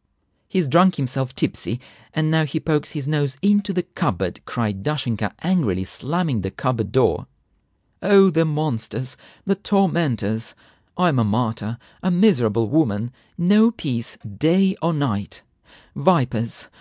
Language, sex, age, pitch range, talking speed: English, male, 40-59, 100-160 Hz, 130 wpm